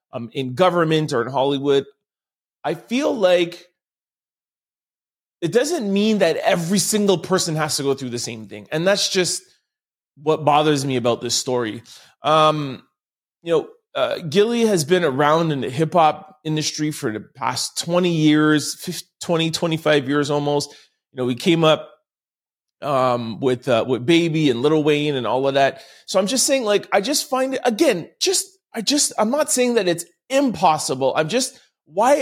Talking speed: 175 wpm